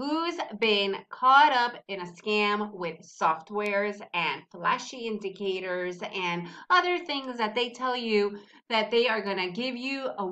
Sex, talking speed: female, 155 wpm